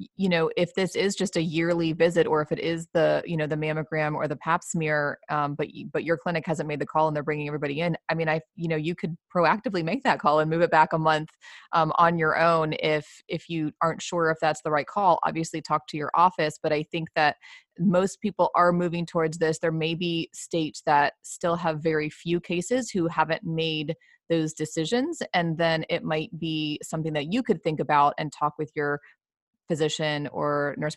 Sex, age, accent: female, 20-39, American